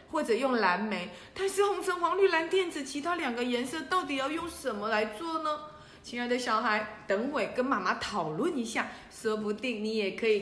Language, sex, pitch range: Chinese, female, 195-275 Hz